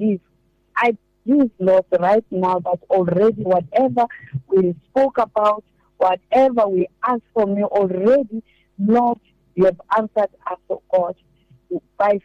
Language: English